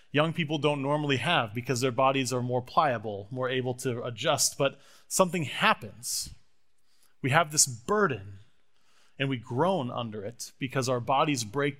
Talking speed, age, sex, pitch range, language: 160 wpm, 30-49, male, 130-170 Hz, English